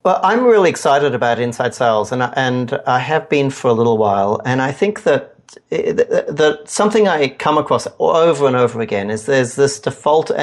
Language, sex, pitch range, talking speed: English, male, 110-145 Hz, 200 wpm